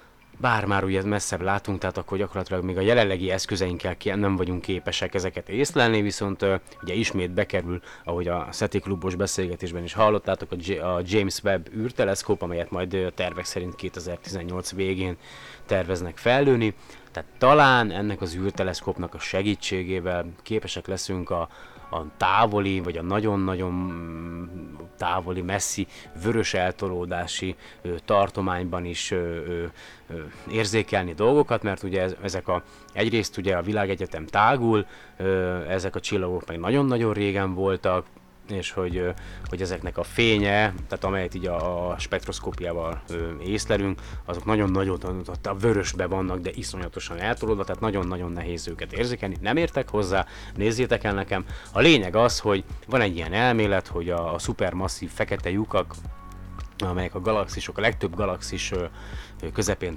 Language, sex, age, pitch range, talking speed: Hungarian, male, 30-49, 90-105 Hz, 135 wpm